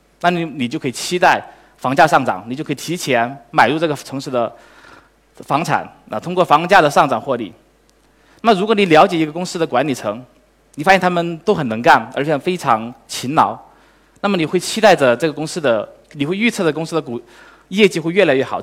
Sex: male